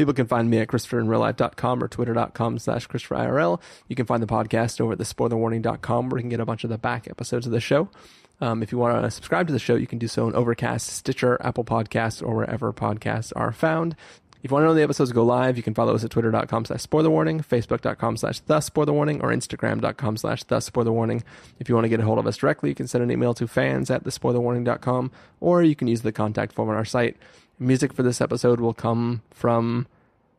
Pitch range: 115-130 Hz